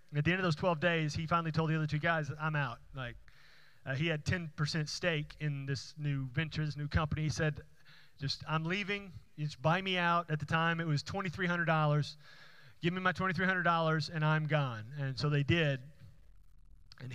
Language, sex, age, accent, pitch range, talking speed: English, male, 30-49, American, 135-155 Hz, 200 wpm